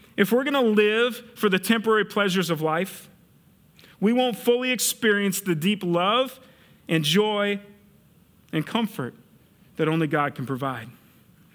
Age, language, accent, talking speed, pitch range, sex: 40-59, English, American, 135 wpm, 170-225 Hz, male